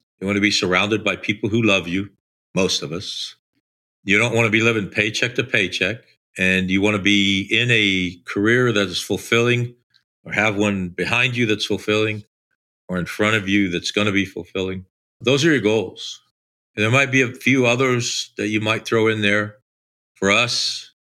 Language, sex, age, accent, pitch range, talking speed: English, male, 50-69, American, 90-110 Hz, 195 wpm